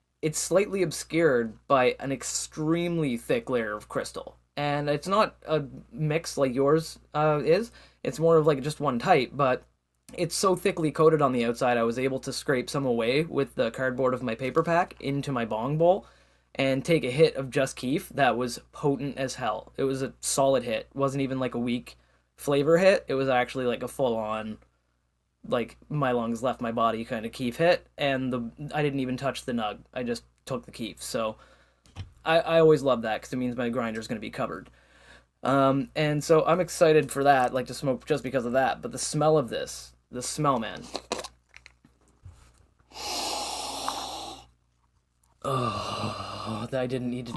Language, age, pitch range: English, 20-39, 115-150 Hz